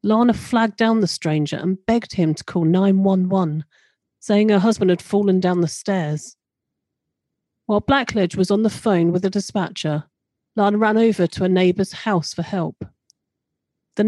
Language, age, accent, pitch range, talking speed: English, 40-59, British, 165-215 Hz, 160 wpm